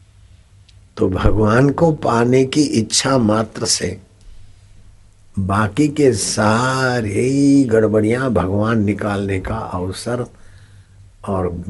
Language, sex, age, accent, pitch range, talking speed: Hindi, male, 60-79, native, 95-110 Hz, 85 wpm